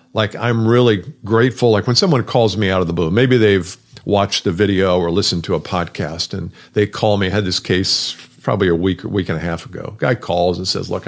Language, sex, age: English, male, 50-69